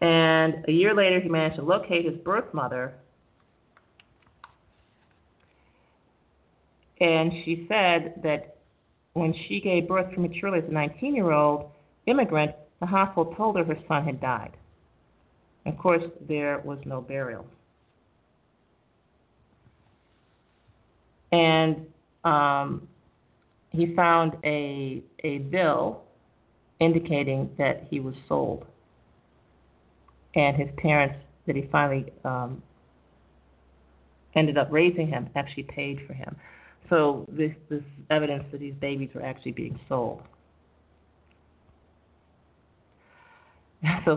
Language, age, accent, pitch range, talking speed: English, 40-59, American, 125-165 Hz, 105 wpm